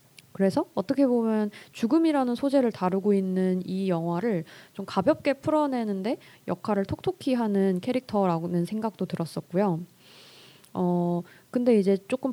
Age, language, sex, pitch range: 20-39, Korean, female, 180-240 Hz